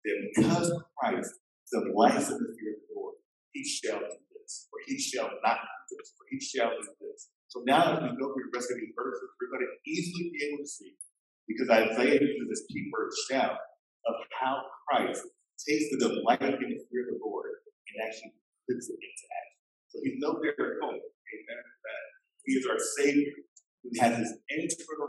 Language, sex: English, male